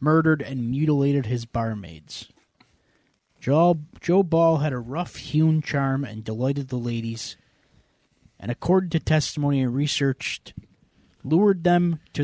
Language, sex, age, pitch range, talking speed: English, male, 20-39, 125-155 Hz, 120 wpm